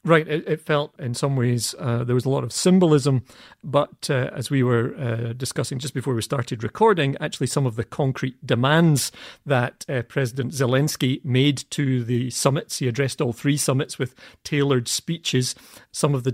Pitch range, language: 125-150 Hz, English